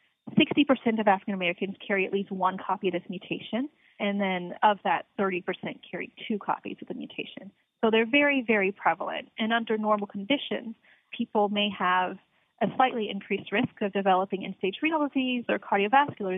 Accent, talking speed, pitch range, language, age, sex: American, 160 wpm, 195-230 Hz, English, 30-49, female